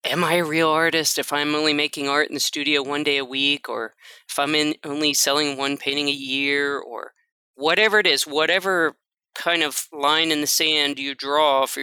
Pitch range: 140-175 Hz